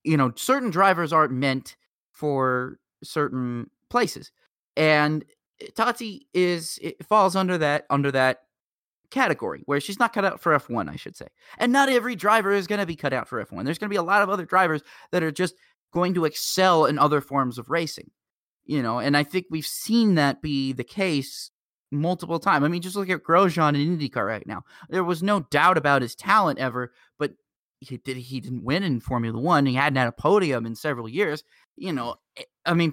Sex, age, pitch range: male, 30-49, 140-200 Hz